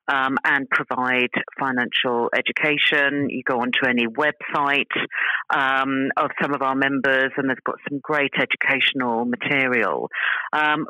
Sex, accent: female, British